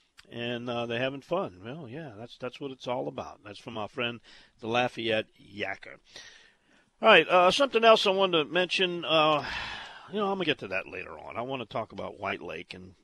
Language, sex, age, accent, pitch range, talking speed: English, male, 50-69, American, 110-165 Hz, 220 wpm